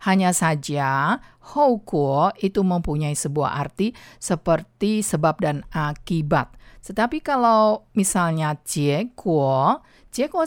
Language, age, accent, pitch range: Chinese, 50-69, Indonesian, 150-210 Hz